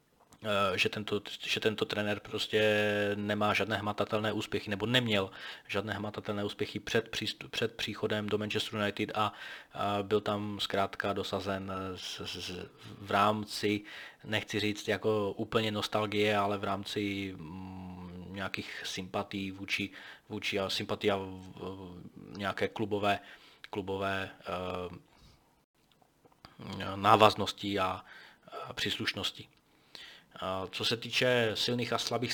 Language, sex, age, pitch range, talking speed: Czech, male, 20-39, 100-110 Hz, 115 wpm